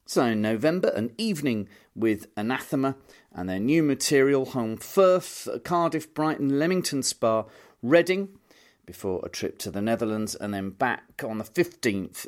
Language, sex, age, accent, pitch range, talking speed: English, male, 40-59, British, 110-155 Hz, 145 wpm